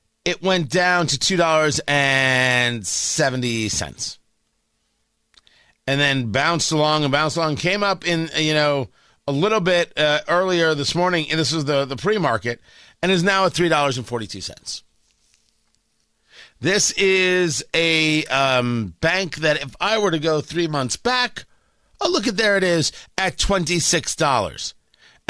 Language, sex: English, male